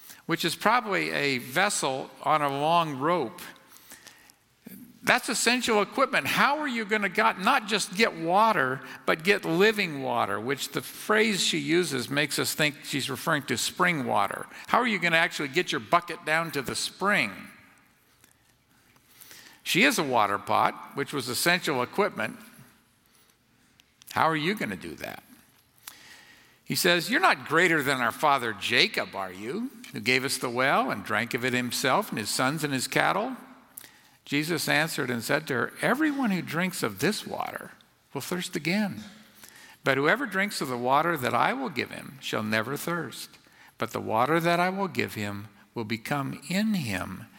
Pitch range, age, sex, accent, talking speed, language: 130-205 Hz, 50-69, male, American, 170 wpm, English